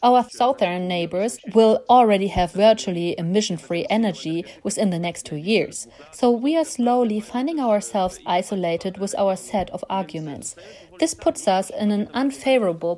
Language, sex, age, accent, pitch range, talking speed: English, female, 40-59, German, 180-245 Hz, 150 wpm